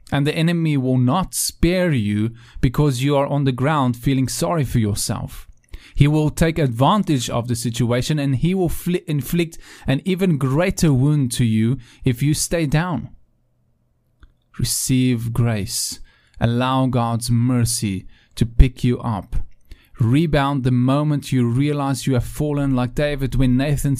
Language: English